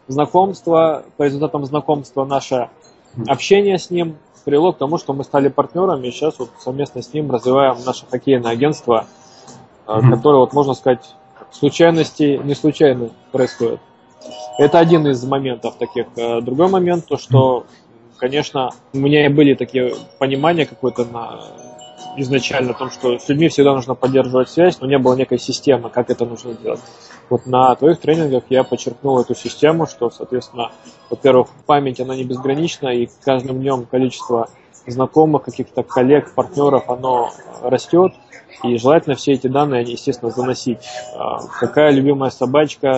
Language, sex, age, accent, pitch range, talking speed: Russian, male, 20-39, native, 125-150 Hz, 145 wpm